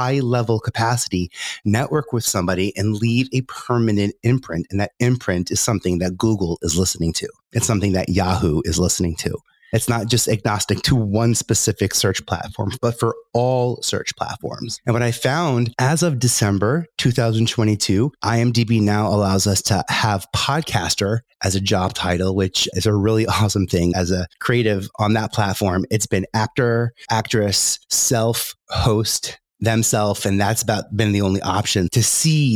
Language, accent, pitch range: English, American, 95-120 Hz